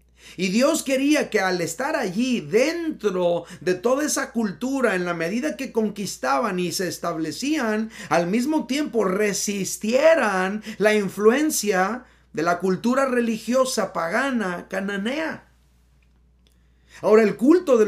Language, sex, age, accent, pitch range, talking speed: Spanish, male, 40-59, Mexican, 180-245 Hz, 120 wpm